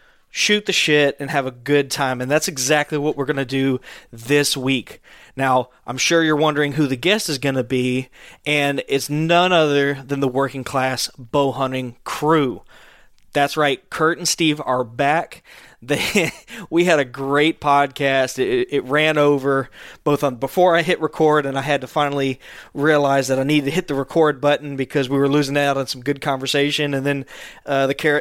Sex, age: male, 20-39